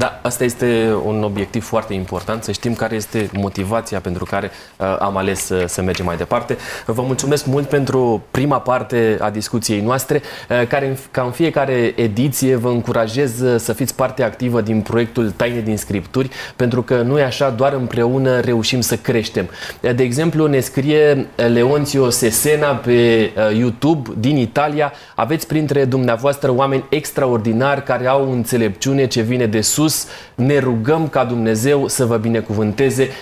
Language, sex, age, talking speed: Romanian, male, 20-39, 150 wpm